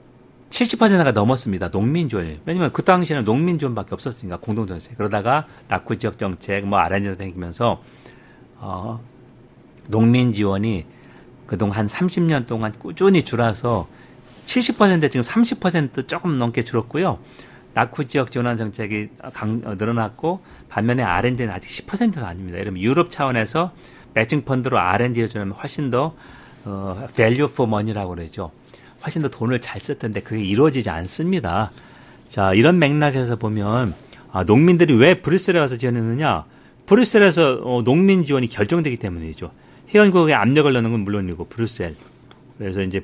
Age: 40-59